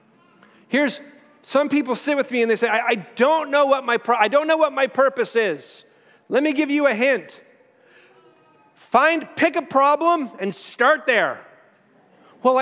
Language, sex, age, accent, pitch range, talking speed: English, male, 40-59, American, 225-290 Hz, 170 wpm